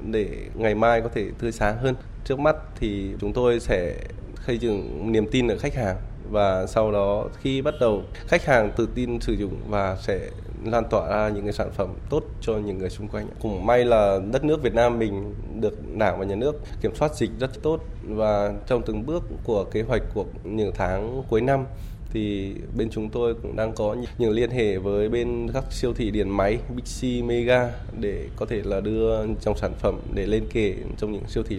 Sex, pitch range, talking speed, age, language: male, 100-120 Hz, 215 wpm, 20-39, Vietnamese